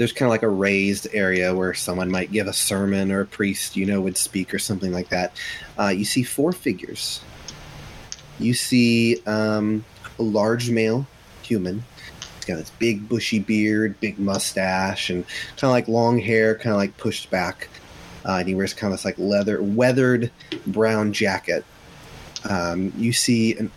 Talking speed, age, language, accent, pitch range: 180 wpm, 30-49, English, American, 100-120 Hz